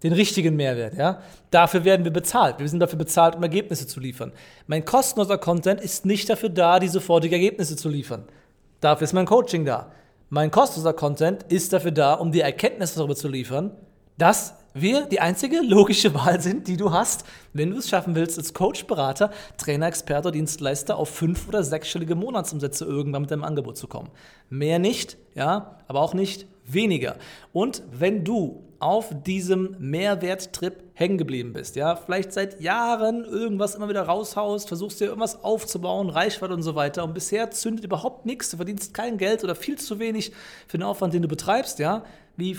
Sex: male